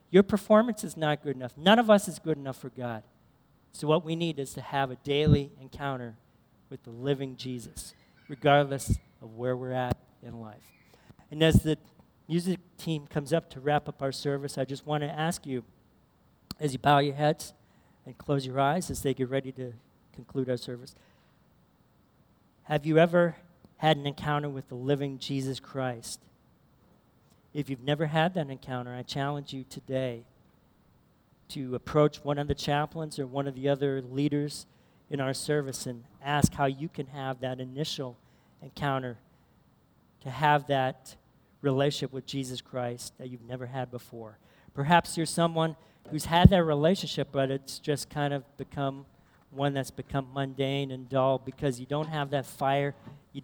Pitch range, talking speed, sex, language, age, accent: 130-150 Hz, 170 wpm, male, English, 40-59, American